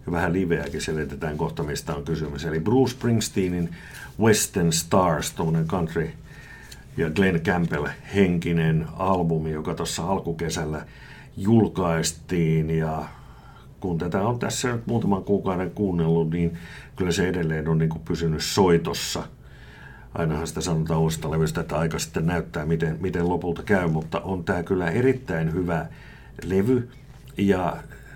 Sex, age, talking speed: male, 60-79, 130 wpm